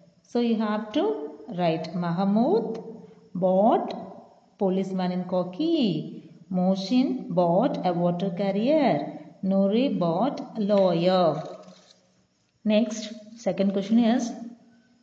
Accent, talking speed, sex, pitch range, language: native, 95 wpm, female, 180-225 Hz, Tamil